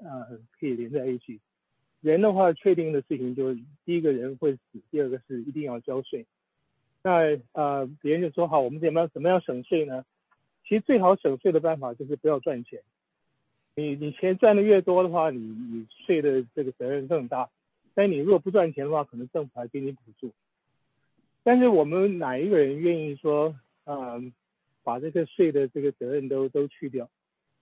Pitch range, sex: 125-170 Hz, male